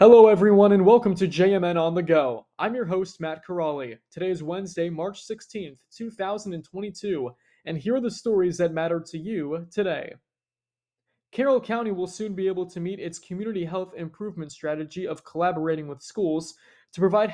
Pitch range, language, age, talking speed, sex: 160-200 Hz, English, 20-39, 170 wpm, male